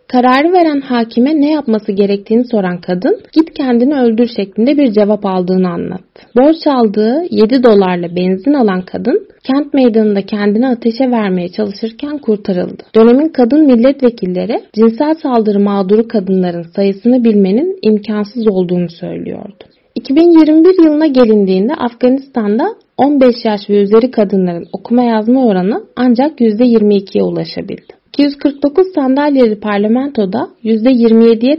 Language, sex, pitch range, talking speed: Turkish, female, 210-270 Hz, 115 wpm